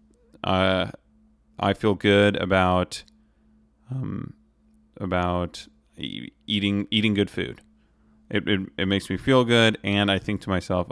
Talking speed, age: 130 wpm, 30-49